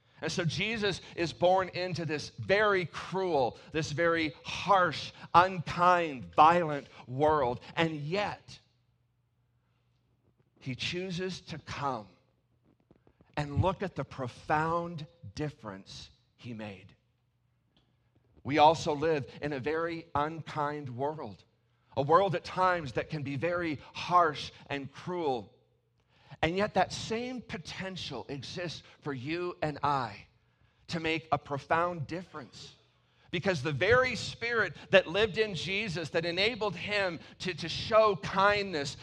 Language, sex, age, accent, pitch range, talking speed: English, male, 40-59, American, 120-175 Hz, 120 wpm